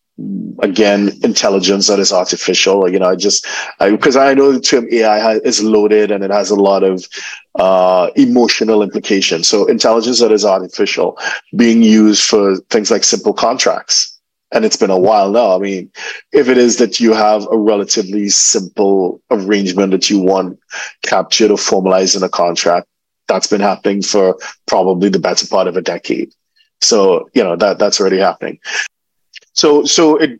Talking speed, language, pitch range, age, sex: 175 wpm, English, 100-125 Hz, 30-49, male